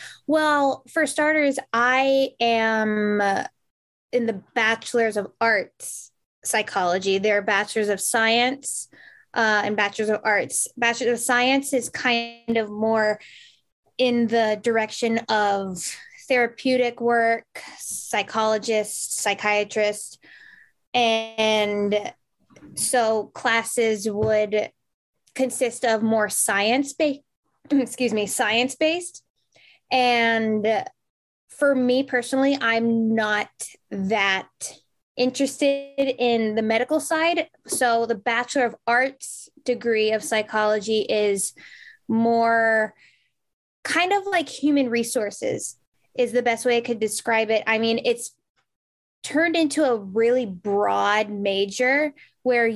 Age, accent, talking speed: 10-29, American, 105 wpm